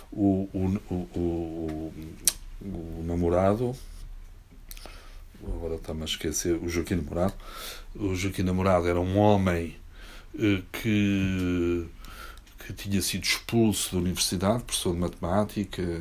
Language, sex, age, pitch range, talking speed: Portuguese, male, 60-79, 85-105 Hz, 110 wpm